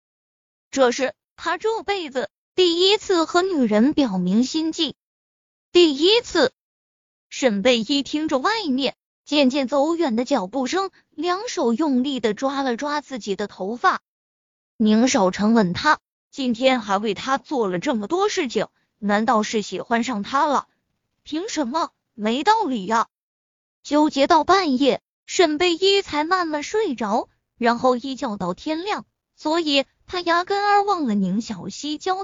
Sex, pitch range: female, 235-350 Hz